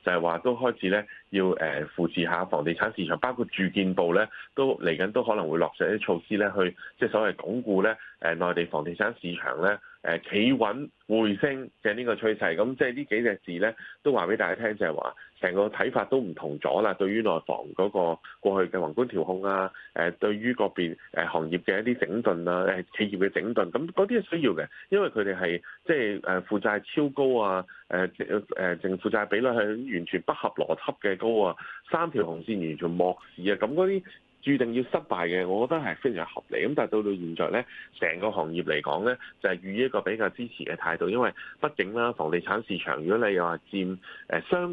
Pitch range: 90-120 Hz